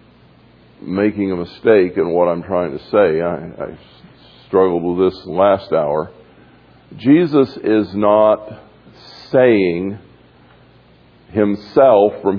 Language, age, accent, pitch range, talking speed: English, 50-69, American, 95-120 Hz, 105 wpm